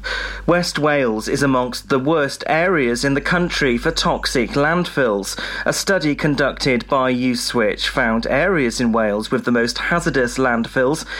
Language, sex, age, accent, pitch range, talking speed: English, male, 30-49, British, 125-160 Hz, 145 wpm